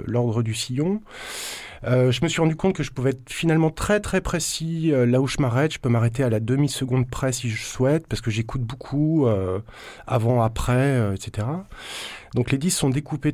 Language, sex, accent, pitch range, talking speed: French, male, French, 110-140 Hz, 205 wpm